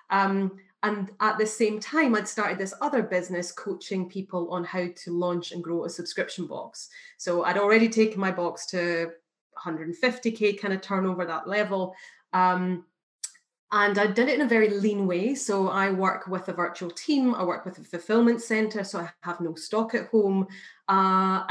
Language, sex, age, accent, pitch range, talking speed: English, female, 30-49, British, 175-215 Hz, 185 wpm